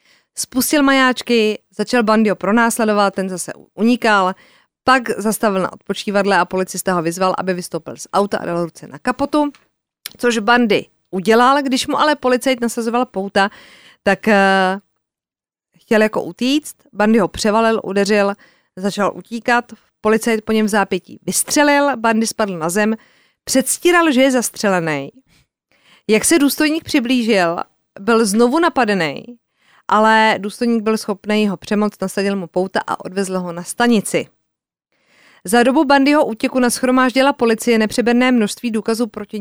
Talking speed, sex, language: 140 wpm, female, Czech